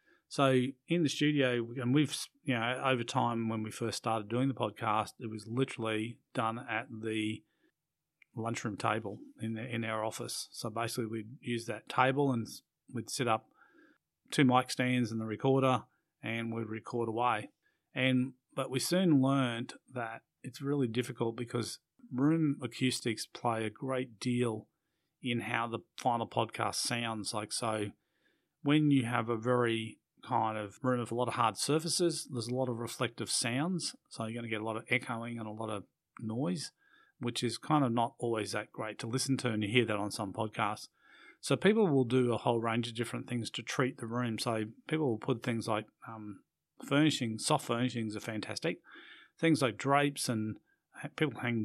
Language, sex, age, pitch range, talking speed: English, male, 30-49, 115-130 Hz, 185 wpm